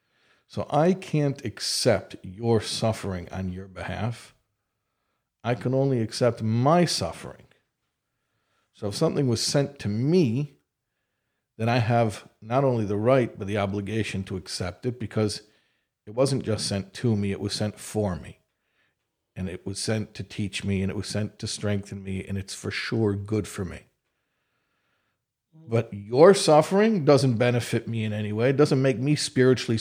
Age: 50-69